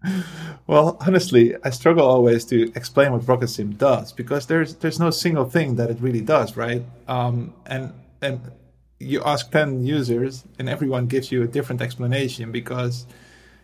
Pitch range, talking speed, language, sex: 120-135 Hz, 160 wpm, English, male